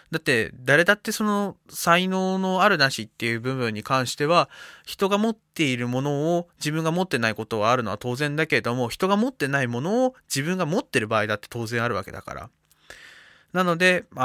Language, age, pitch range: Japanese, 20-39, 115-165 Hz